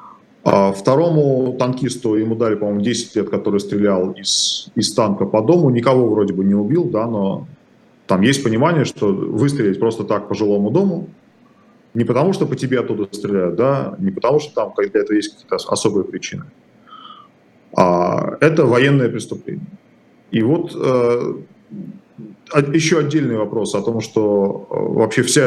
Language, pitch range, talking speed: Russian, 110-165 Hz, 155 wpm